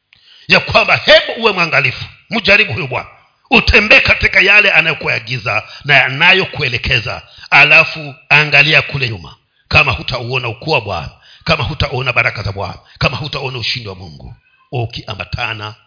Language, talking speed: Swahili, 130 wpm